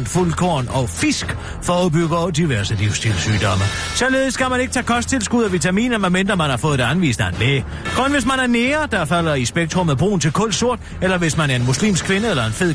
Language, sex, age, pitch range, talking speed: Danish, male, 40-59, 130-210 Hz, 210 wpm